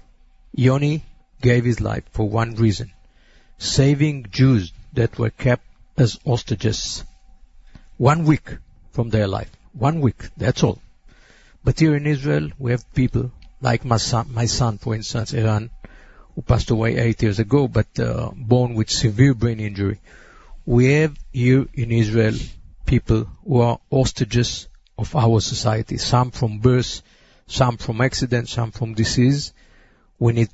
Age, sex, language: 50-69, male, English